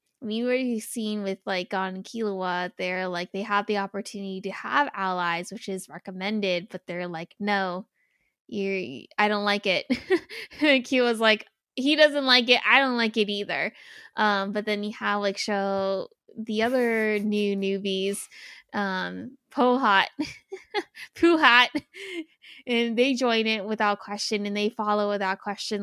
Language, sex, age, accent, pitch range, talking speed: English, female, 20-39, American, 195-230 Hz, 155 wpm